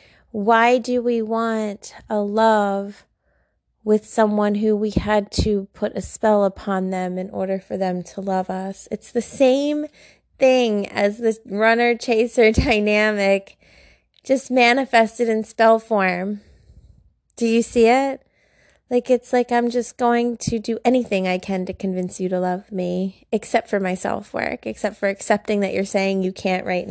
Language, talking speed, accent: English, 160 wpm, American